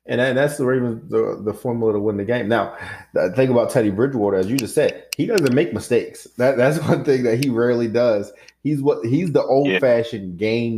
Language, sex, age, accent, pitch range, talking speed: English, male, 20-39, American, 100-120 Hz, 225 wpm